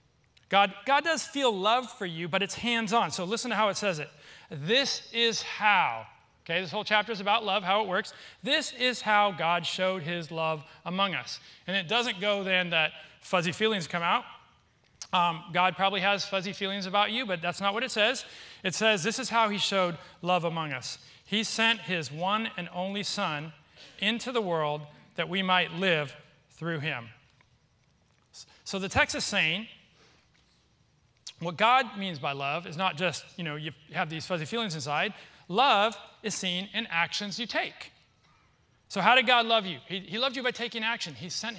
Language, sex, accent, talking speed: English, male, American, 190 wpm